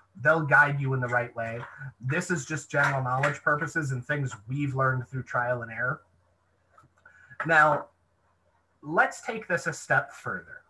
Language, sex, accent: English, male, American